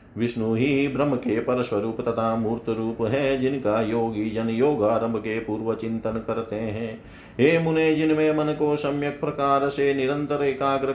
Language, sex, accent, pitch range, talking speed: Hindi, male, native, 110-135 Hz, 160 wpm